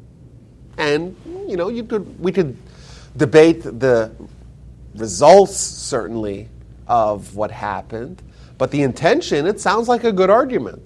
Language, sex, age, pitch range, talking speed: English, male, 30-49, 105-135 Hz, 125 wpm